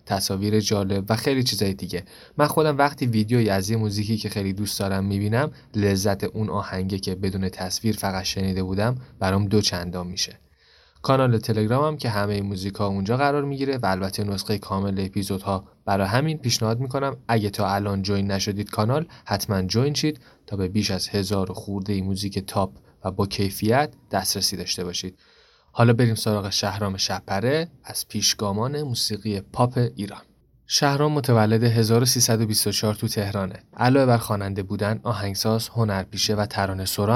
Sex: male